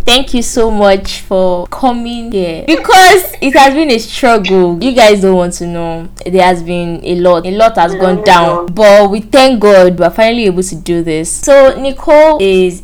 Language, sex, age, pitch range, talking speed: English, female, 10-29, 175-230 Hz, 200 wpm